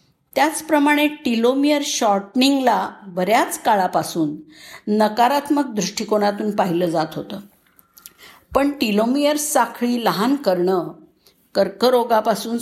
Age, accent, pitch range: 50-69, native, 200-270 Hz